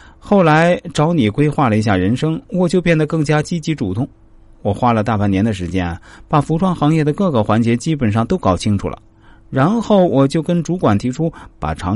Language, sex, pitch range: Chinese, male, 100-155 Hz